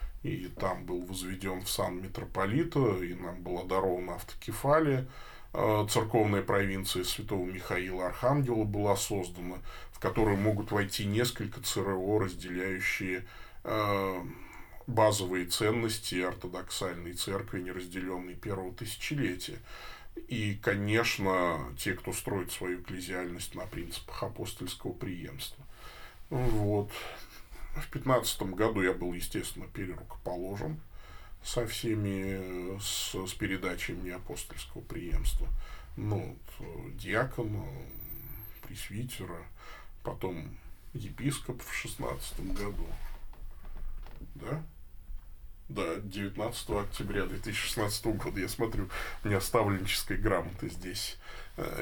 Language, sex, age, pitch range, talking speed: Russian, male, 20-39, 90-110 Hz, 95 wpm